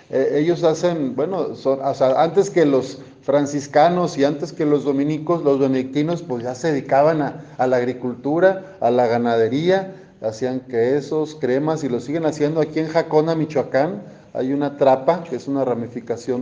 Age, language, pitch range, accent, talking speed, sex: 40-59, Spanish, 135-180 Hz, Mexican, 170 wpm, male